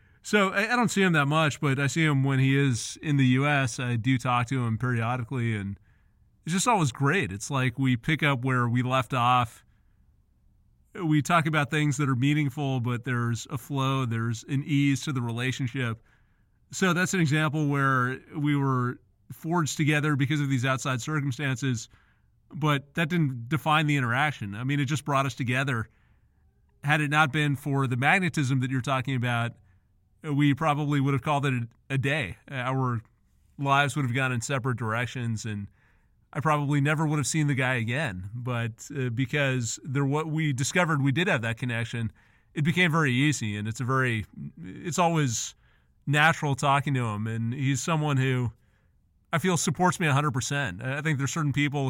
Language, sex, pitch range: English, male, 120-150 Hz